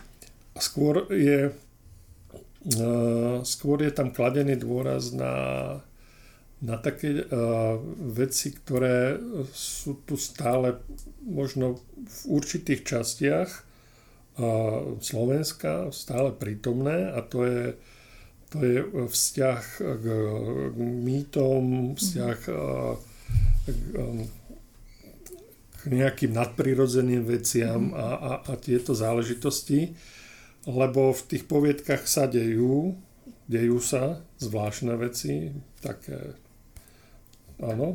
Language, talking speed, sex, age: Slovak, 80 wpm, male, 50-69